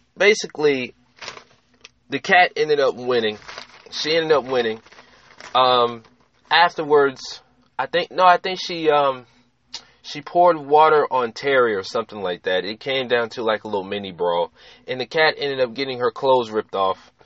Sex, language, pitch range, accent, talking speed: male, English, 125-185 Hz, American, 165 wpm